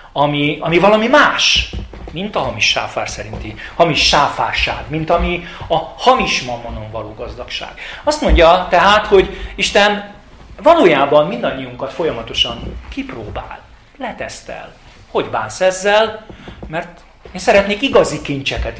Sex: male